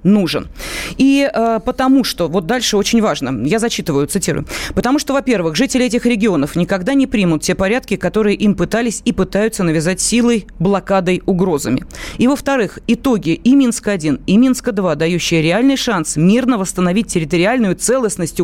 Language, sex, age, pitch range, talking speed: Russian, female, 30-49, 170-235 Hz, 150 wpm